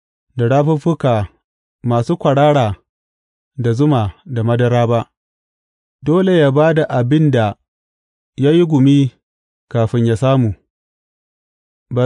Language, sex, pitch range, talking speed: English, male, 105-150 Hz, 95 wpm